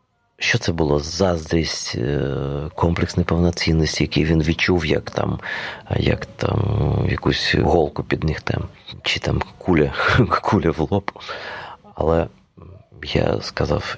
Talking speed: 105 wpm